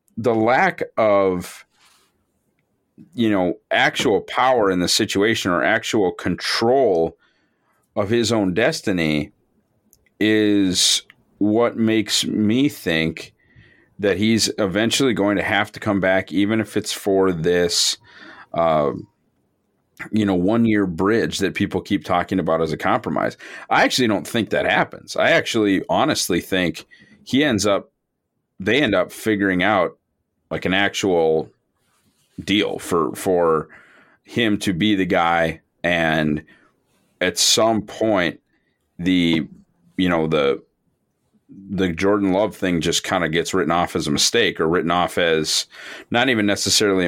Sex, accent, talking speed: male, American, 135 wpm